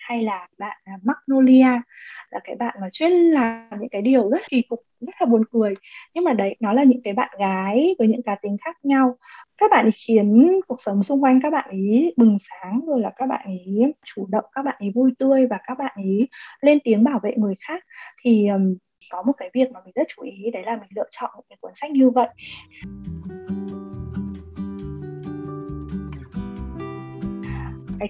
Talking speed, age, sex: 190 wpm, 20-39, female